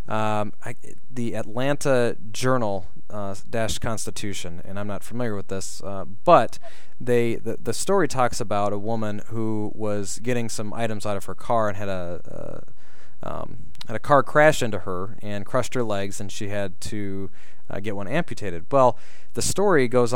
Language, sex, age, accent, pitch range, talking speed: English, male, 20-39, American, 100-120 Hz, 175 wpm